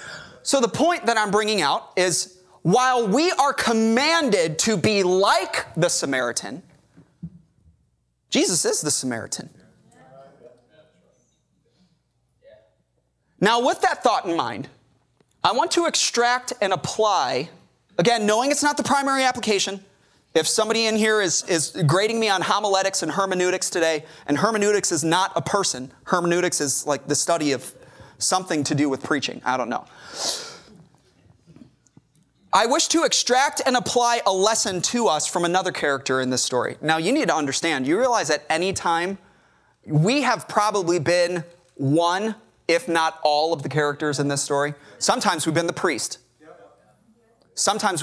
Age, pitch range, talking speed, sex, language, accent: 30-49, 150-220 Hz, 150 wpm, male, English, American